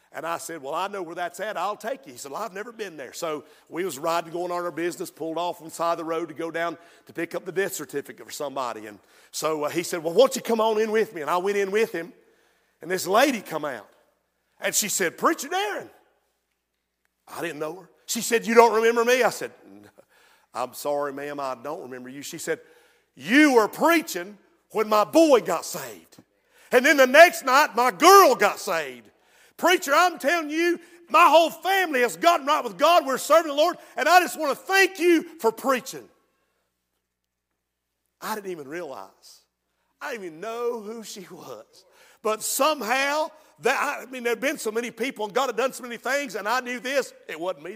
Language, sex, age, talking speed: English, male, 50-69, 220 wpm